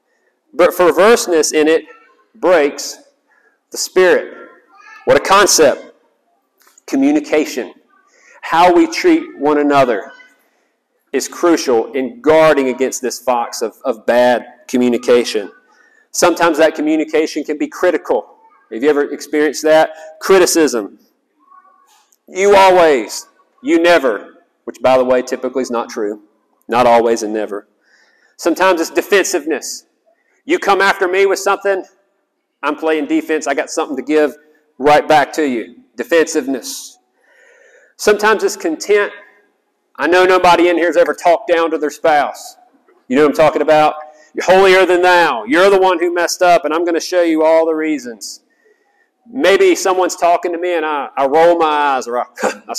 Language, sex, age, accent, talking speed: English, male, 40-59, American, 150 wpm